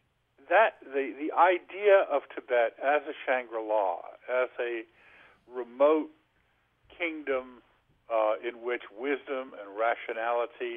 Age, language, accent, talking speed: 50-69, English, American, 105 wpm